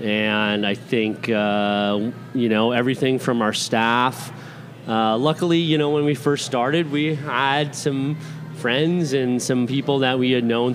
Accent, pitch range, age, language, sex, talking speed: American, 110-140 Hz, 30-49, English, male, 160 wpm